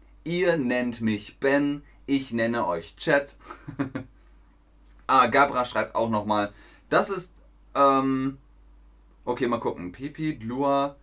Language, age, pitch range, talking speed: German, 30-49, 95-140 Hz, 115 wpm